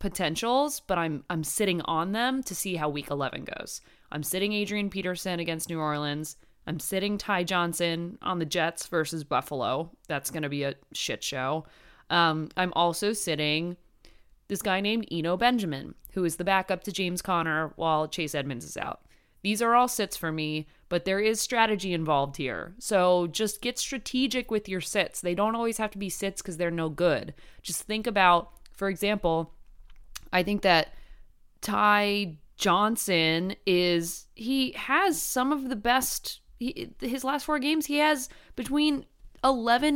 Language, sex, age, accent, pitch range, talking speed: English, female, 20-39, American, 165-245 Hz, 170 wpm